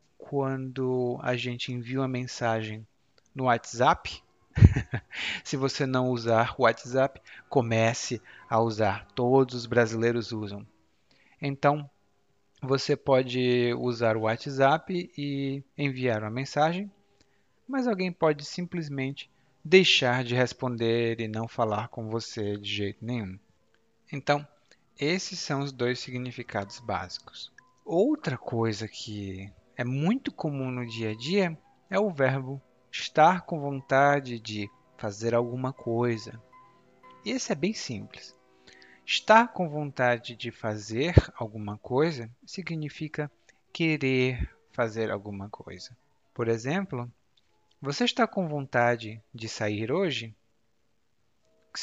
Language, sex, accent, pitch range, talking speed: Portuguese, male, Brazilian, 115-145 Hz, 115 wpm